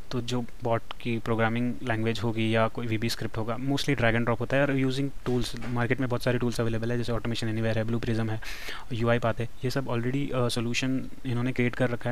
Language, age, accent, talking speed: Hindi, 20-39, native, 230 wpm